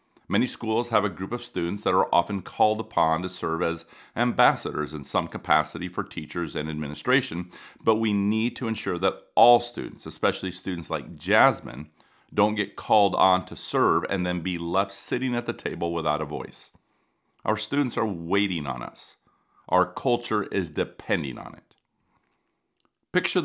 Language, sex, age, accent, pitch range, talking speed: English, male, 40-59, American, 85-110 Hz, 165 wpm